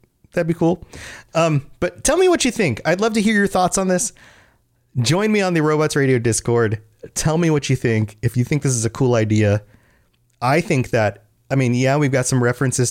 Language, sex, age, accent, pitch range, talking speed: English, male, 30-49, American, 105-140 Hz, 225 wpm